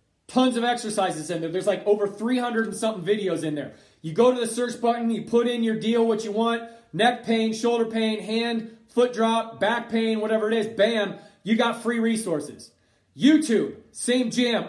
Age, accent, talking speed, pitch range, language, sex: 30-49, American, 195 wpm, 205-235 Hz, English, male